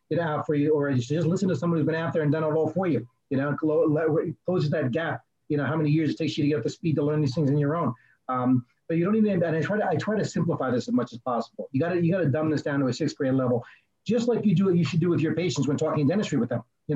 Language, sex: English, male